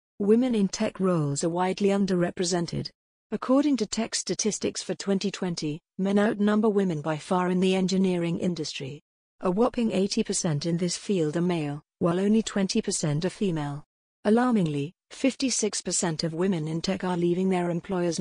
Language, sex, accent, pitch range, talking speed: English, female, British, 170-205 Hz, 150 wpm